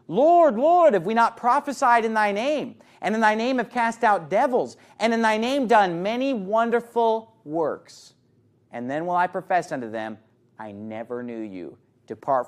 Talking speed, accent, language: 180 wpm, American, English